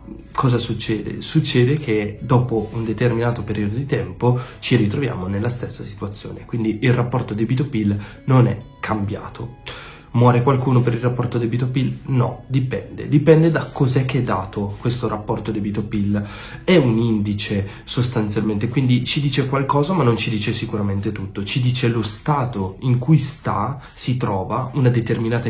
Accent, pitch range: native, 105-130 Hz